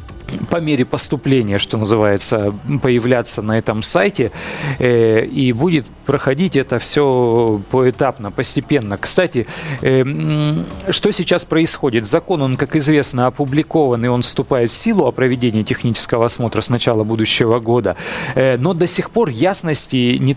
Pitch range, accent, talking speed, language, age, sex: 125-160 Hz, native, 130 wpm, Russian, 40-59, male